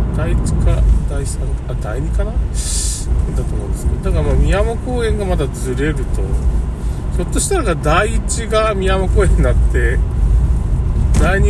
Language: Japanese